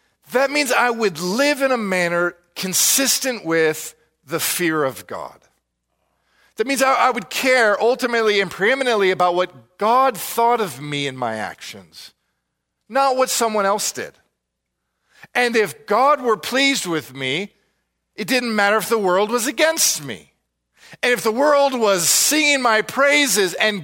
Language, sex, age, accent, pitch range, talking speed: English, male, 50-69, American, 140-235 Hz, 155 wpm